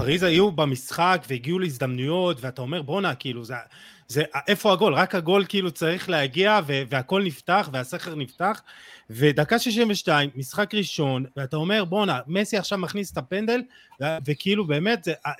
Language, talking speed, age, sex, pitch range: Hebrew, 150 wpm, 30-49, male, 130-180 Hz